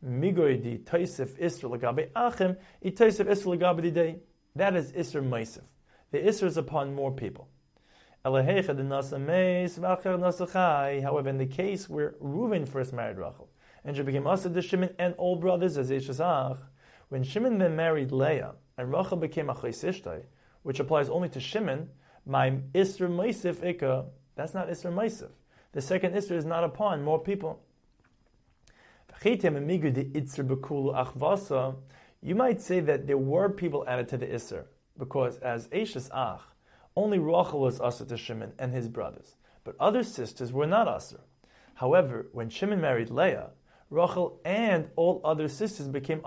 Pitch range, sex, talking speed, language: 135-180 Hz, male, 125 wpm, English